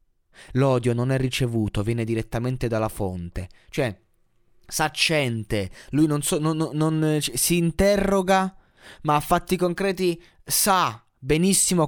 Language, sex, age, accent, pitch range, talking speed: Italian, male, 20-39, native, 100-135 Hz, 120 wpm